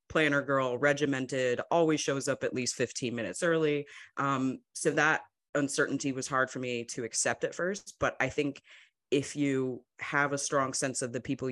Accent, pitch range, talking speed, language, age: American, 125-140 Hz, 180 wpm, English, 30-49